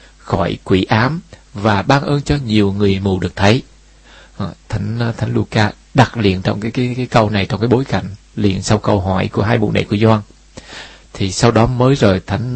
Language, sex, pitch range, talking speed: Vietnamese, male, 95-120 Hz, 205 wpm